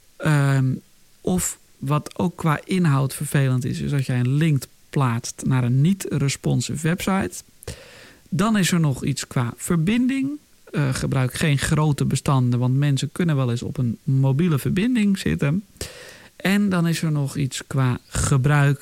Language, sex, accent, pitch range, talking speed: Dutch, male, Dutch, 130-155 Hz, 155 wpm